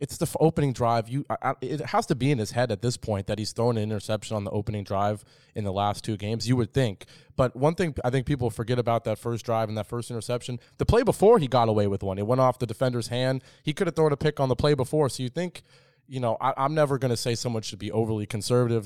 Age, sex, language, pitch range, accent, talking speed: 20-39, male, English, 110-130 Hz, American, 285 wpm